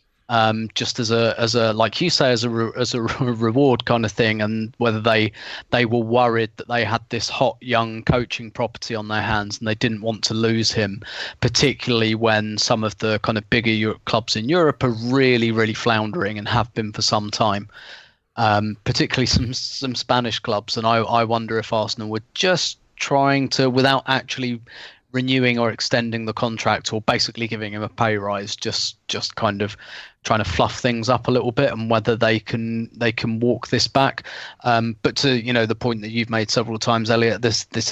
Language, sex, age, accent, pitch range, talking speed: English, male, 20-39, British, 110-120 Hz, 205 wpm